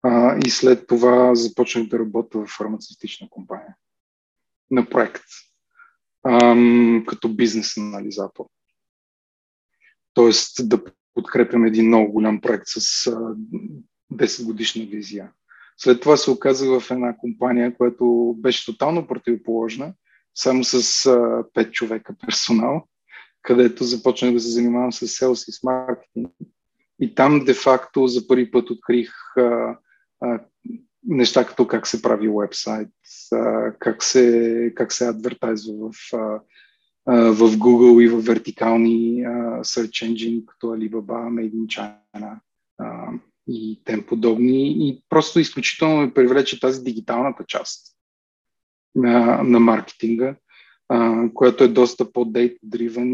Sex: male